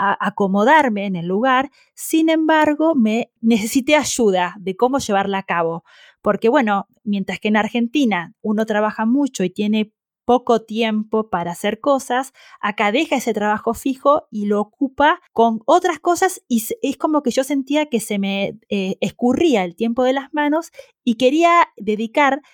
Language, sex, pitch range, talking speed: Spanish, female, 210-280 Hz, 160 wpm